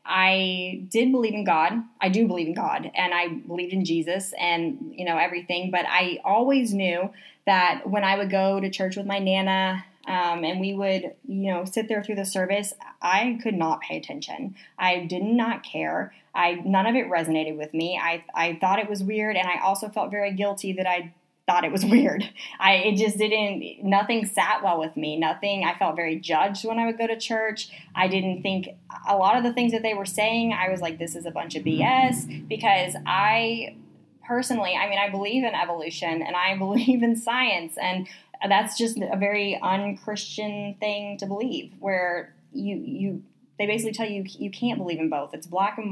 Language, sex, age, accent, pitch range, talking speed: English, female, 10-29, American, 180-215 Hz, 205 wpm